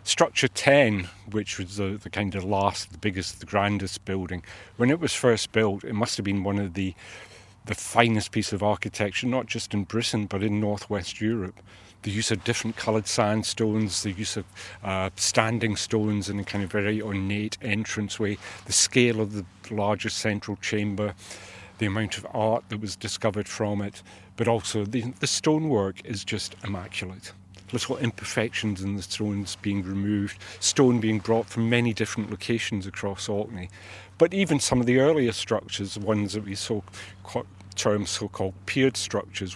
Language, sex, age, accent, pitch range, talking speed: English, male, 40-59, British, 100-115 Hz, 170 wpm